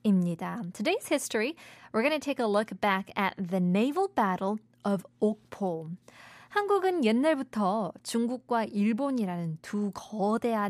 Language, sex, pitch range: Korean, female, 190-265 Hz